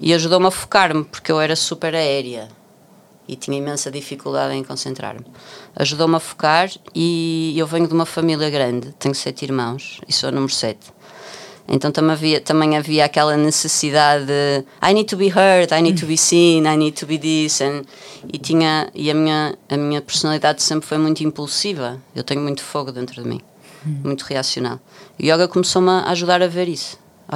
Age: 20-39